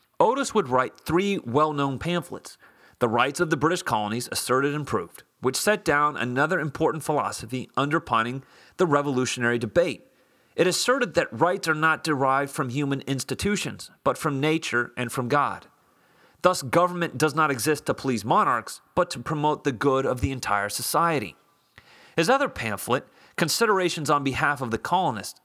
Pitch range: 125-175 Hz